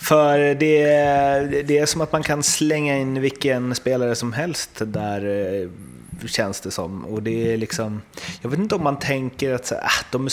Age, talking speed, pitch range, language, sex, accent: 30-49, 205 wpm, 100-130 Hz, Swedish, male, native